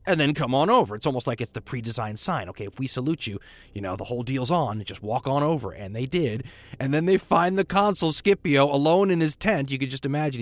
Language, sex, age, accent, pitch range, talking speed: English, male, 30-49, American, 105-150 Hz, 265 wpm